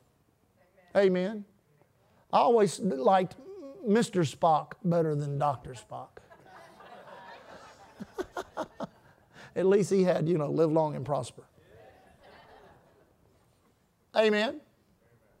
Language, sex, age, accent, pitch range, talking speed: English, male, 50-69, American, 200-295 Hz, 80 wpm